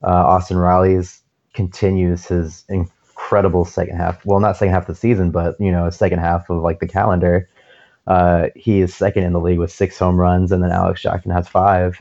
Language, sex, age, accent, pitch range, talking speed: English, male, 20-39, American, 90-100 Hz, 210 wpm